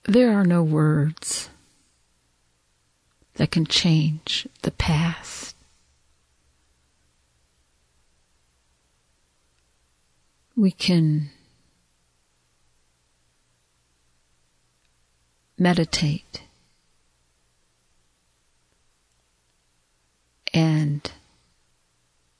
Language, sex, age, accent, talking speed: English, female, 50-69, American, 35 wpm